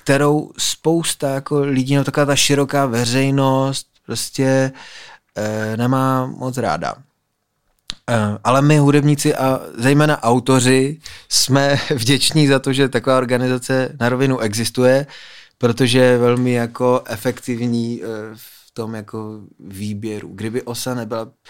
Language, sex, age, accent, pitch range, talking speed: Czech, male, 20-39, native, 110-130 Hz, 105 wpm